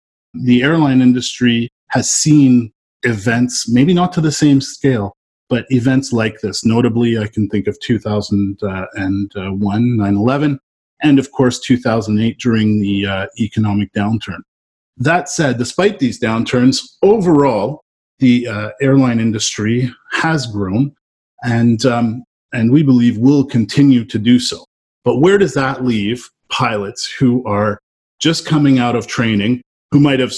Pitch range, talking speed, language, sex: 110-140 Hz, 135 wpm, English, male